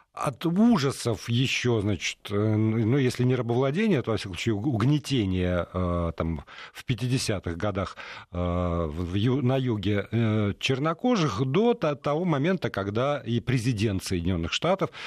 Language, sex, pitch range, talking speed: Russian, male, 110-155 Hz, 110 wpm